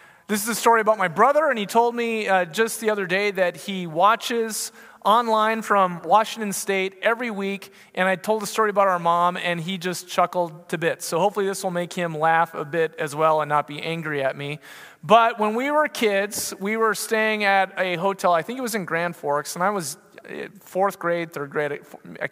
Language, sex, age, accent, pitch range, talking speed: English, male, 30-49, American, 175-225 Hz, 220 wpm